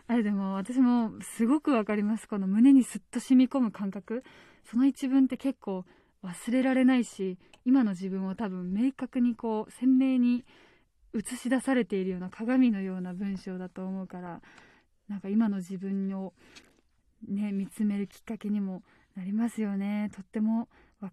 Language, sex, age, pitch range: Japanese, female, 20-39, 200-255 Hz